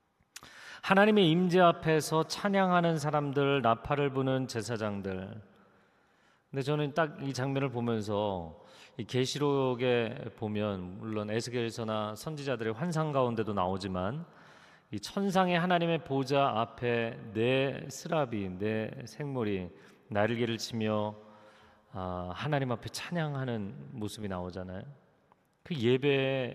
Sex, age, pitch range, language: male, 40-59, 105-145 Hz, Korean